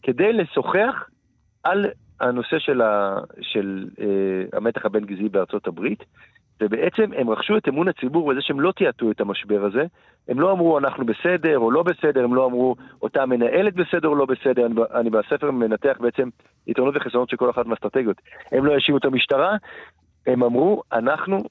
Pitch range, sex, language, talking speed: 105-135 Hz, male, Hebrew, 175 wpm